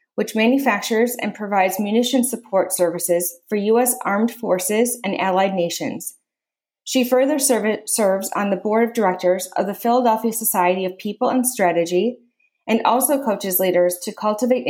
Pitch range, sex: 195-250 Hz, female